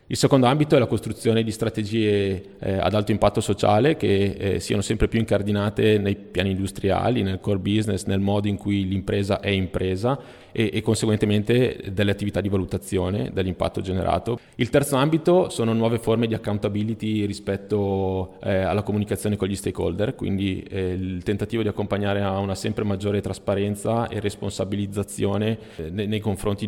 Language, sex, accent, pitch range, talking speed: Italian, male, native, 95-110 Hz, 160 wpm